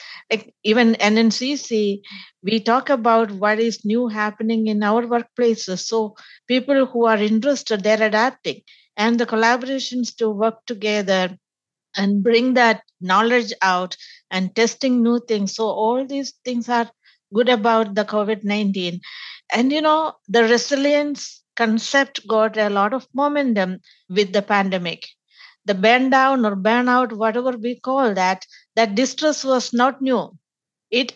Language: English